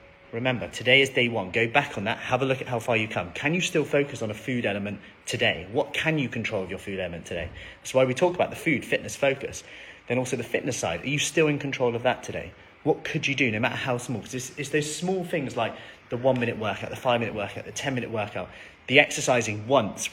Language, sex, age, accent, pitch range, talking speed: English, male, 30-49, British, 115-150 Hz, 250 wpm